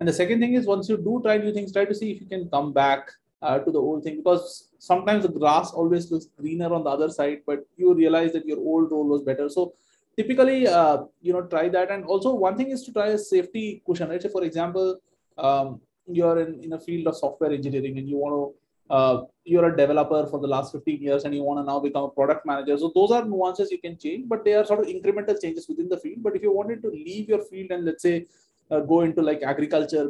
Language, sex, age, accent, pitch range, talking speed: English, male, 20-39, Indian, 145-190 Hz, 255 wpm